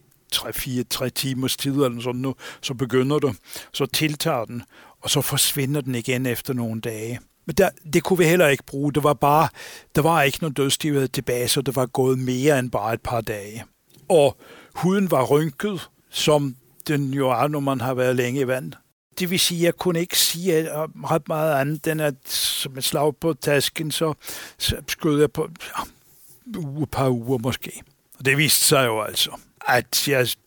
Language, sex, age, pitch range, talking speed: Danish, male, 60-79, 125-145 Hz, 195 wpm